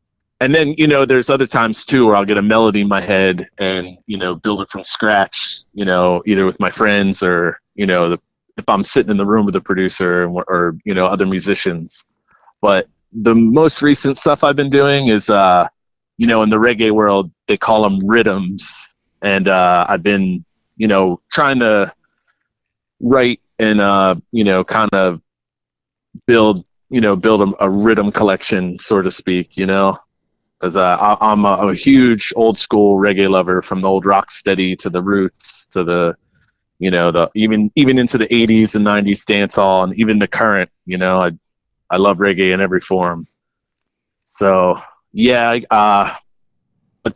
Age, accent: 30-49, American